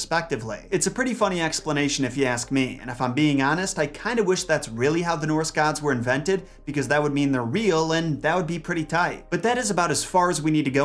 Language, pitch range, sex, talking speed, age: English, 130-160 Hz, male, 275 wpm, 30-49